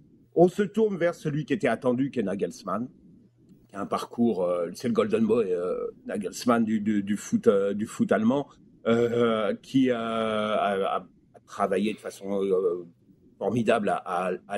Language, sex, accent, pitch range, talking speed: French, male, French, 125-170 Hz, 175 wpm